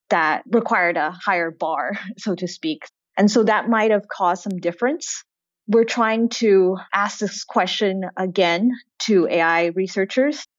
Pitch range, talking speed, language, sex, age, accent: 170-205 Hz, 145 wpm, English, female, 20-39, American